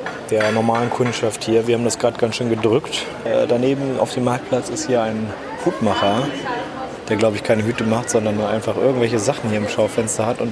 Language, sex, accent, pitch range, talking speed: German, male, German, 110-130 Hz, 205 wpm